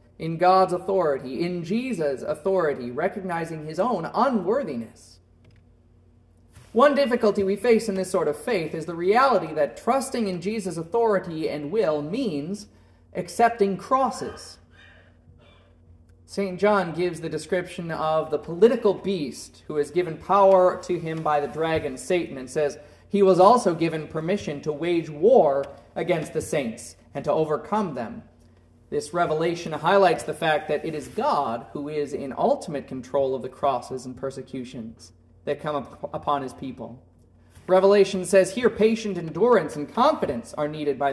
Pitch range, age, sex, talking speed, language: 130-195 Hz, 30-49, male, 150 wpm, English